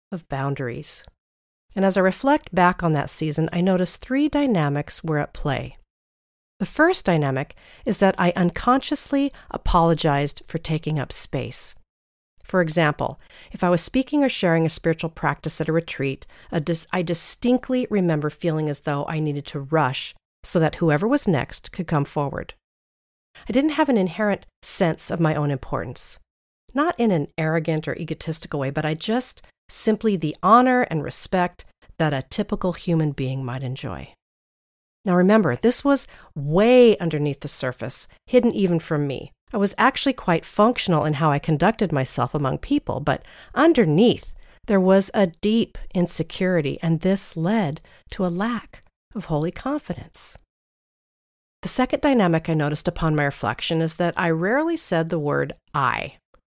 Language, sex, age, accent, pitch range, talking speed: English, female, 40-59, American, 150-210 Hz, 160 wpm